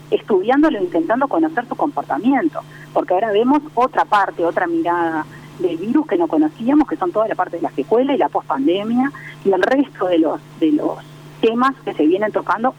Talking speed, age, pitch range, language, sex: 190 wpm, 40-59, 200-315 Hz, Spanish, female